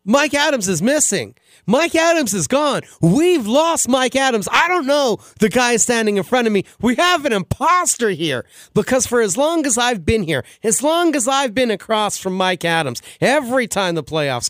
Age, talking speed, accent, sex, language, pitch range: 30-49, 200 wpm, American, male, English, 170-265 Hz